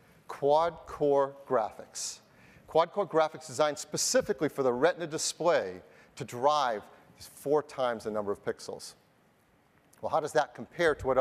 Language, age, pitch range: English, 40-59, 130-170 Hz